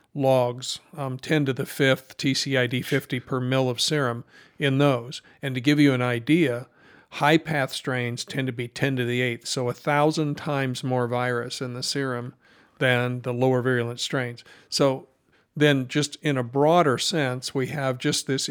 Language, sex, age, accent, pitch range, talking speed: English, male, 50-69, American, 130-145 Hz, 180 wpm